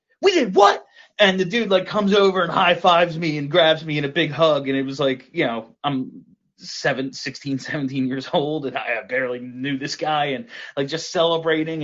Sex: male